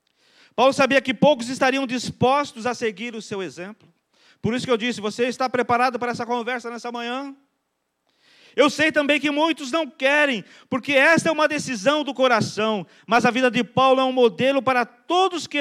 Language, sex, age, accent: Portuguese, male, 40-59, Brazilian